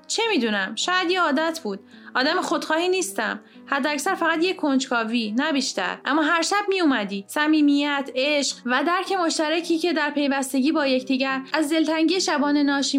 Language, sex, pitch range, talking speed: Persian, female, 245-305 Hz, 150 wpm